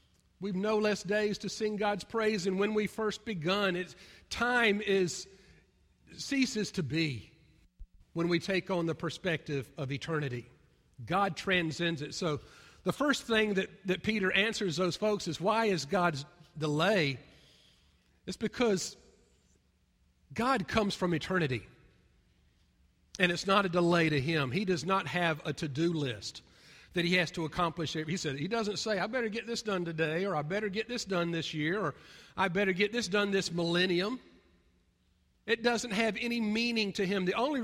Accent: American